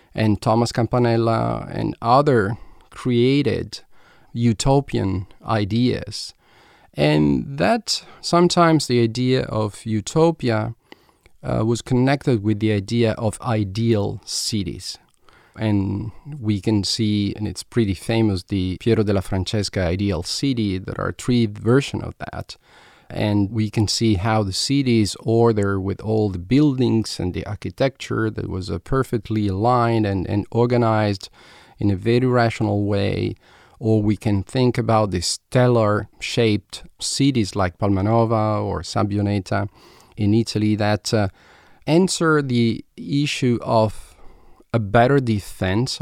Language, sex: English, male